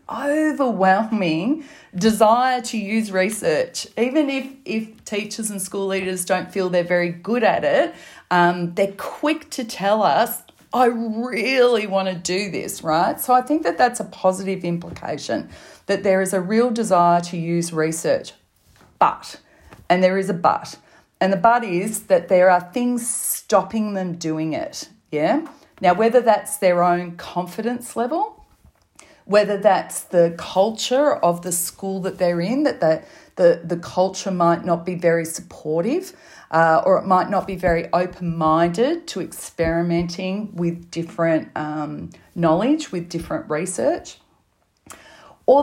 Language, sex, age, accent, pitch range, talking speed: English, female, 40-59, Australian, 175-245 Hz, 150 wpm